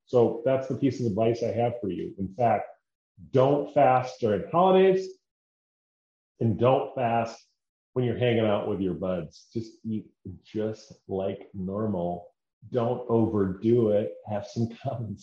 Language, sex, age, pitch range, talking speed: English, male, 40-59, 105-130 Hz, 145 wpm